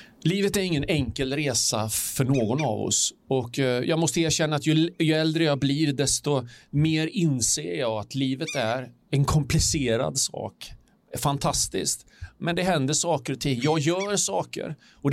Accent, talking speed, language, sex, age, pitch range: native, 160 wpm, Swedish, male, 40-59, 135-175 Hz